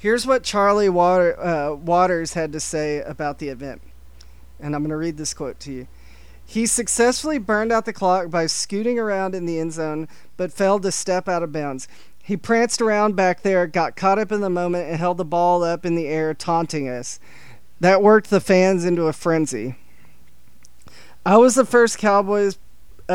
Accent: American